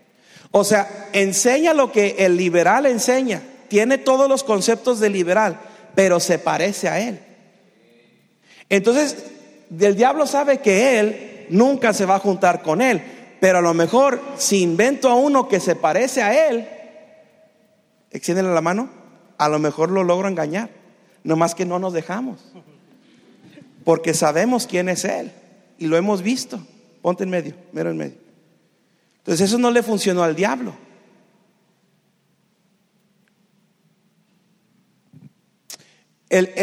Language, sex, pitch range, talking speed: Spanish, male, 175-235 Hz, 135 wpm